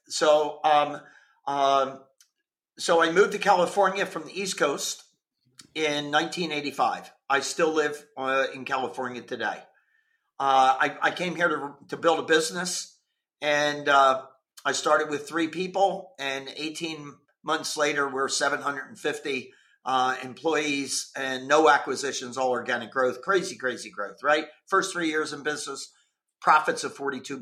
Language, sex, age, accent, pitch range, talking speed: English, male, 50-69, American, 140-180 Hz, 140 wpm